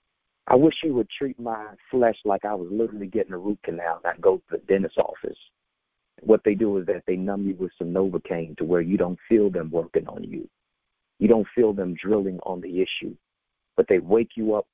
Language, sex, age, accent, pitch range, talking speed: English, male, 50-69, American, 100-135 Hz, 225 wpm